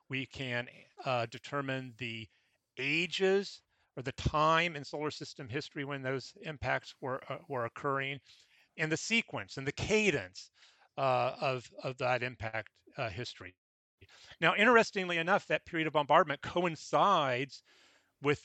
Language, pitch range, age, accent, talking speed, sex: English, 125-155 Hz, 40-59, American, 135 wpm, male